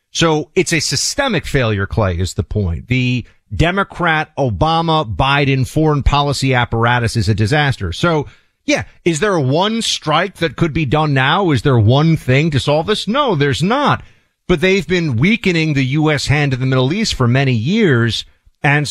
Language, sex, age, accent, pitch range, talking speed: English, male, 40-59, American, 110-145 Hz, 175 wpm